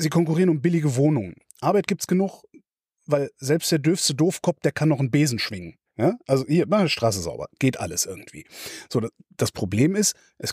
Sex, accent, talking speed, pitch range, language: male, German, 190 wpm, 120-175 Hz, German